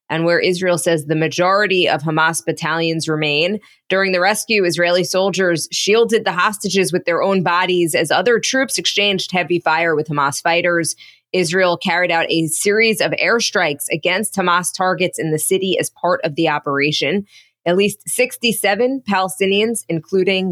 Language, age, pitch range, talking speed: English, 20-39, 160-195 Hz, 160 wpm